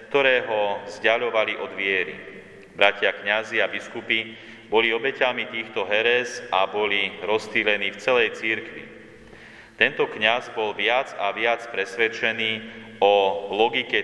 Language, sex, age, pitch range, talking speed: Slovak, male, 30-49, 100-115 Hz, 115 wpm